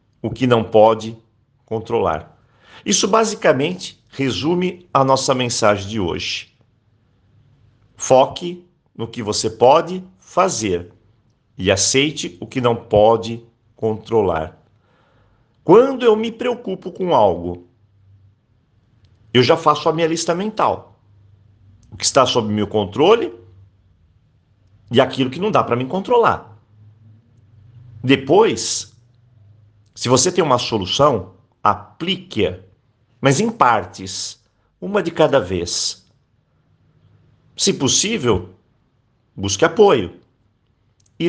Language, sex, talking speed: Portuguese, male, 105 wpm